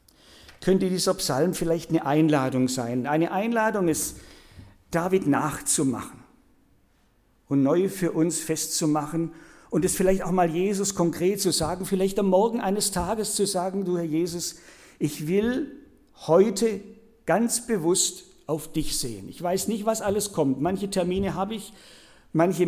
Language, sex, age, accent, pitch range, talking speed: German, male, 50-69, German, 155-205 Hz, 145 wpm